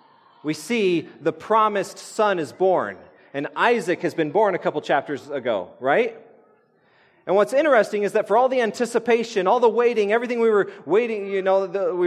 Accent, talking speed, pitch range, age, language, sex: American, 180 wpm, 170-225 Hz, 30-49, English, male